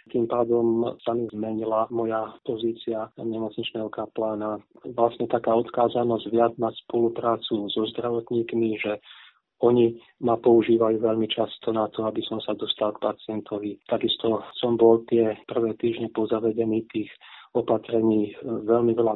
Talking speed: 130 wpm